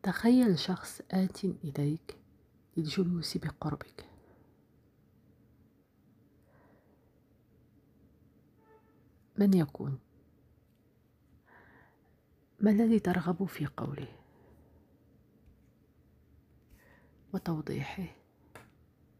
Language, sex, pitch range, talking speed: Arabic, female, 150-195 Hz, 45 wpm